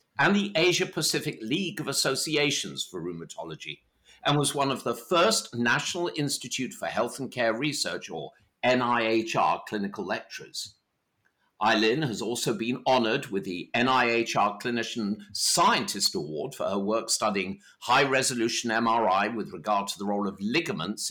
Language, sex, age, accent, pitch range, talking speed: English, male, 50-69, British, 110-150 Hz, 140 wpm